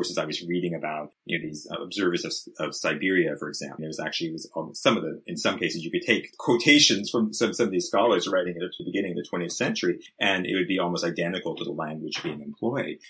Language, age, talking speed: English, 30-49, 245 wpm